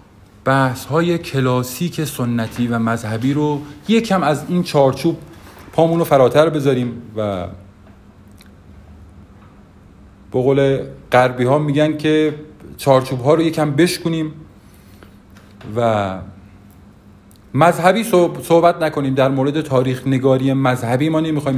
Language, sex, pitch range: Persian, male, 100-155 Hz